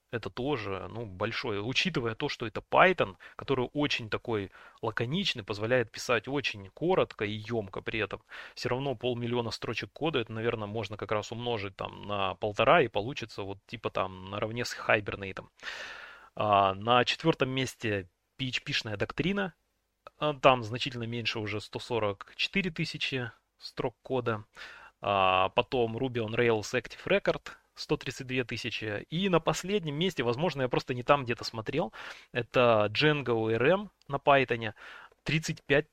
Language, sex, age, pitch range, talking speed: Russian, male, 20-39, 110-140 Hz, 135 wpm